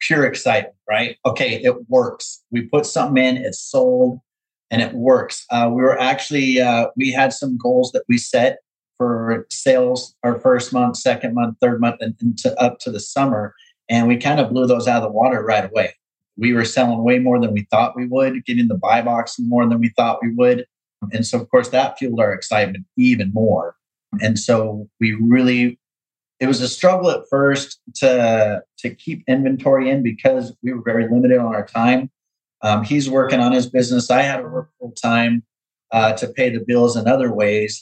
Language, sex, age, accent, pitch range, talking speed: English, male, 30-49, American, 115-130 Hz, 200 wpm